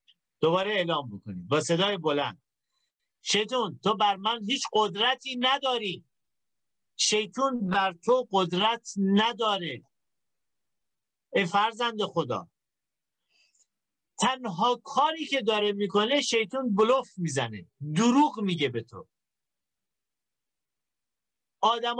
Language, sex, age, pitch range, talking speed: Persian, male, 50-69, 175-260 Hz, 95 wpm